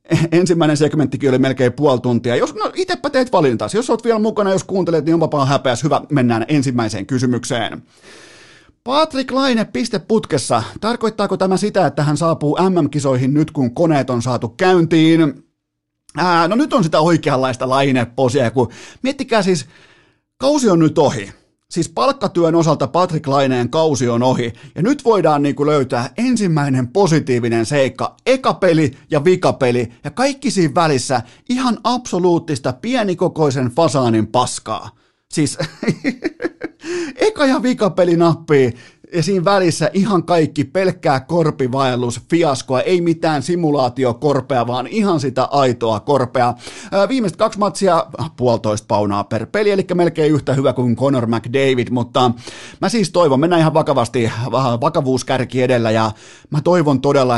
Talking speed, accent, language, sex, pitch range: 135 wpm, native, Finnish, male, 125-180 Hz